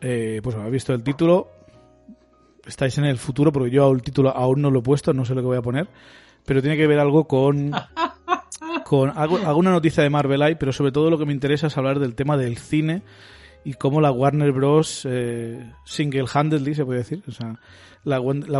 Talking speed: 205 wpm